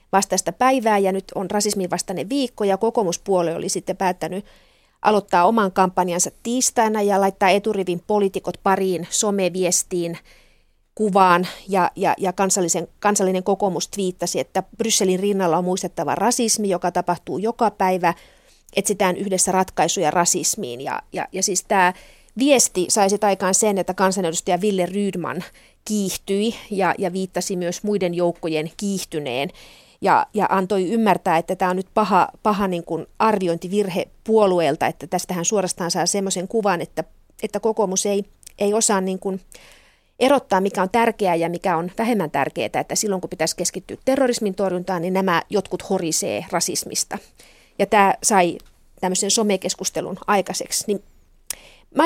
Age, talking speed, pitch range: 30-49, 145 wpm, 180-210 Hz